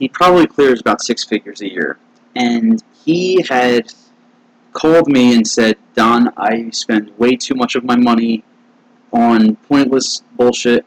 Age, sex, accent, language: 20-39, male, American, English